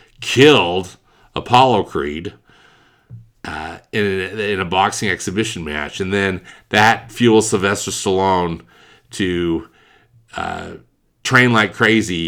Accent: American